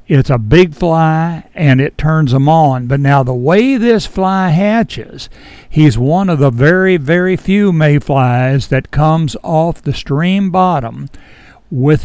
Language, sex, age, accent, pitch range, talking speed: English, male, 60-79, American, 135-175 Hz, 155 wpm